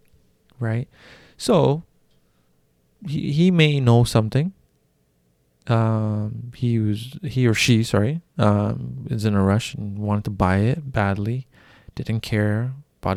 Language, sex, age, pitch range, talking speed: English, male, 20-39, 105-135 Hz, 130 wpm